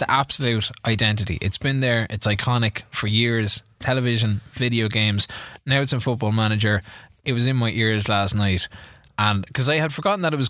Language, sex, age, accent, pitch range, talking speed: English, male, 20-39, Irish, 105-125 Hz, 190 wpm